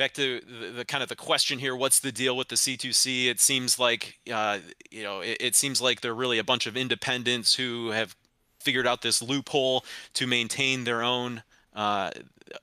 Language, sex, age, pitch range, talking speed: English, male, 30-49, 115-130 Hz, 200 wpm